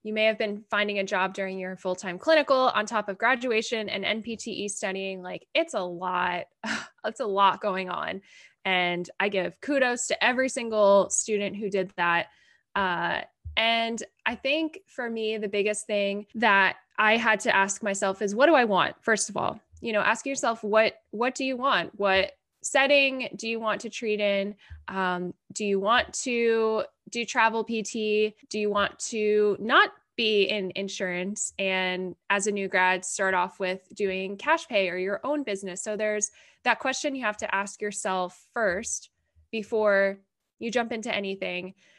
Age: 10-29